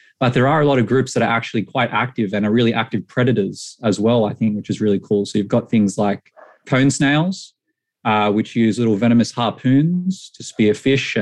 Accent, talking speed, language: Australian, 220 wpm, English